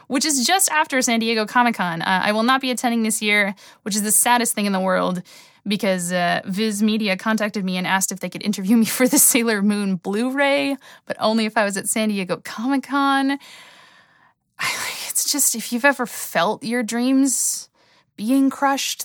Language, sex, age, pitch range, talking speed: English, female, 20-39, 185-255 Hz, 185 wpm